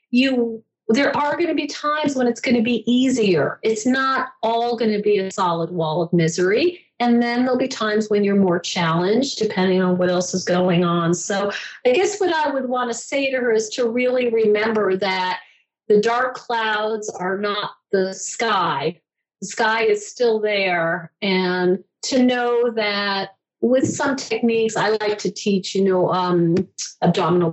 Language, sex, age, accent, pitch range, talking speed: English, female, 40-59, American, 185-230 Hz, 180 wpm